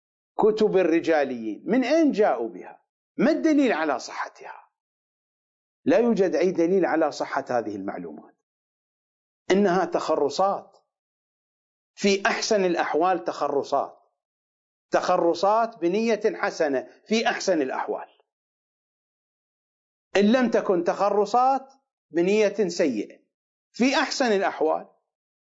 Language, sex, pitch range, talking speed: English, male, 160-220 Hz, 90 wpm